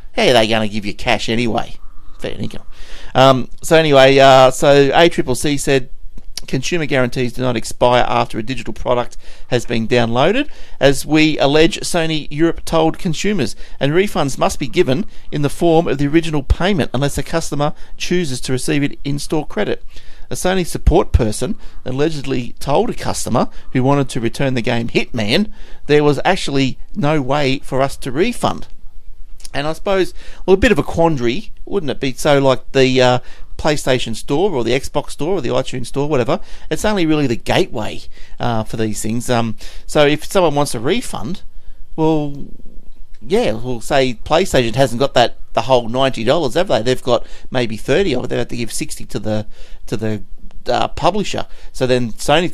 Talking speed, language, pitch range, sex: 180 wpm, English, 120-150 Hz, male